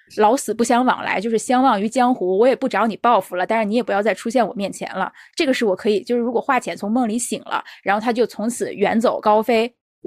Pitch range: 200-255 Hz